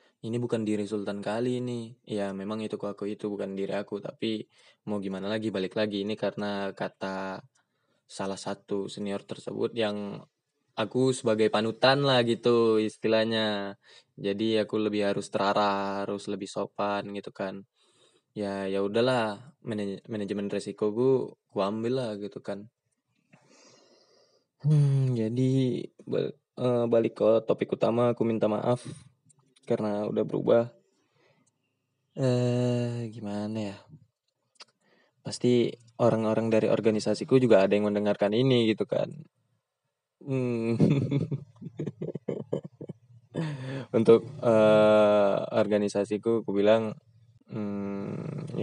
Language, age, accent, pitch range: Indonesian, 20-39, native, 100-125 Hz